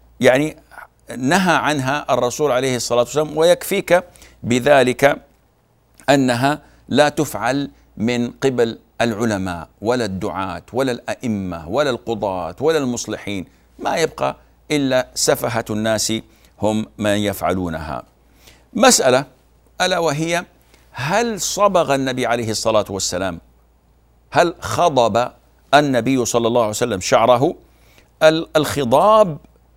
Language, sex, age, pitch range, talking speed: Arabic, male, 60-79, 100-145 Hz, 100 wpm